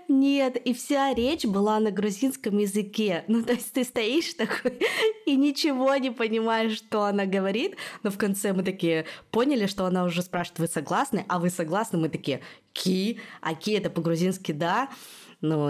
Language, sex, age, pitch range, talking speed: Russian, female, 20-39, 160-215 Hz, 170 wpm